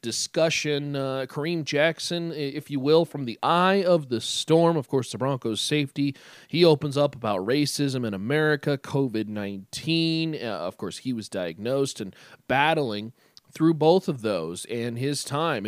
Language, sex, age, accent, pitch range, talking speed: English, male, 30-49, American, 115-150 Hz, 155 wpm